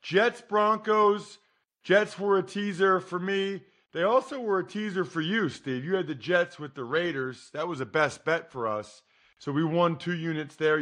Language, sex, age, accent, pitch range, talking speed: English, male, 40-59, American, 130-175 Hz, 200 wpm